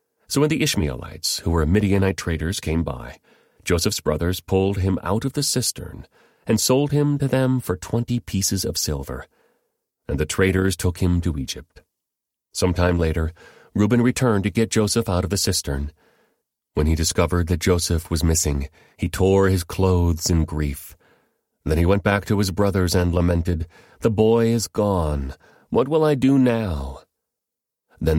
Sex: male